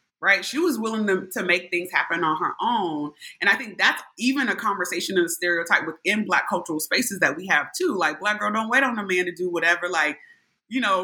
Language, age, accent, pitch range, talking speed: English, 30-49, American, 165-220 Hz, 240 wpm